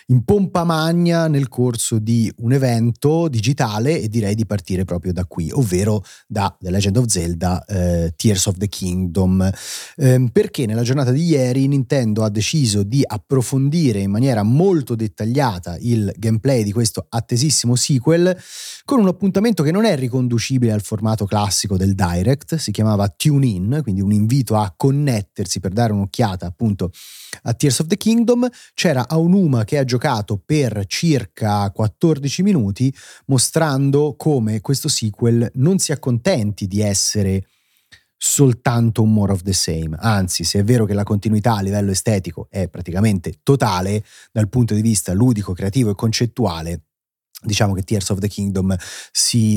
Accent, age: native, 30-49